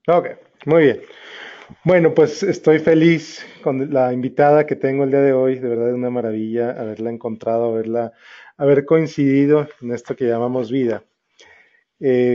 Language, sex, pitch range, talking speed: Spanish, male, 120-145 Hz, 155 wpm